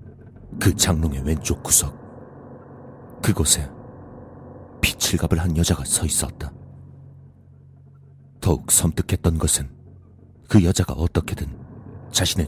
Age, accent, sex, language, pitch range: 40-59, native, male, Korean, 80-100 Hz